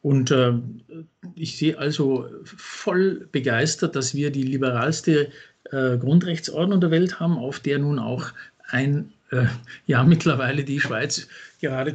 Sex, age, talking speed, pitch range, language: male, 50-69, 135 wpm, 130-165 Hz, German